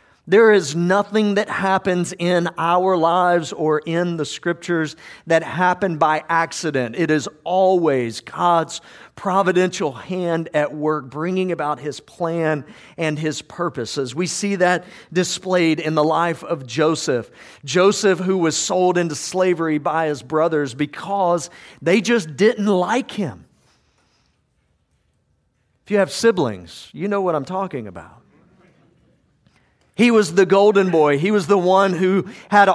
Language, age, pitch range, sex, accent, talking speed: English, 50-69, 160-195 Hz, male, American, 140 wpm